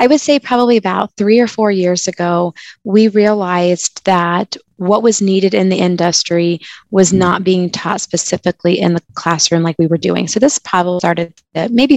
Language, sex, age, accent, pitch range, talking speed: English, female, 20-39, American, 170-200 Hz, 180 wpm